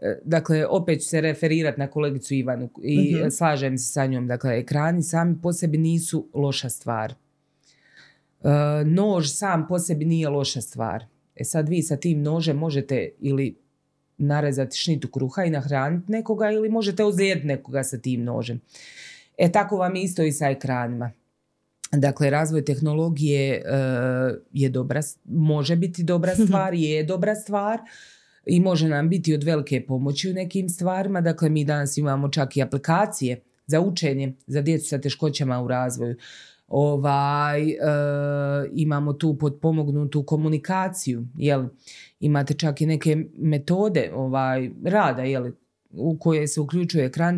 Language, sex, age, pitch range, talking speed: Croatian, female, 30-49, 135-165 Hz, 145 wpm